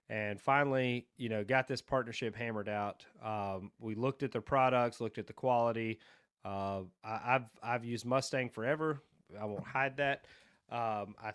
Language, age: English, 30-49